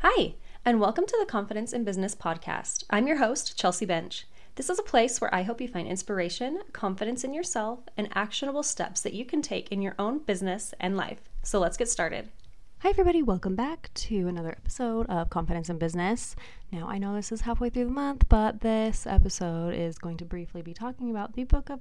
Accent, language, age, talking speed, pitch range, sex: American, English, 20-39, 210 wpm, 170-230 Hz, female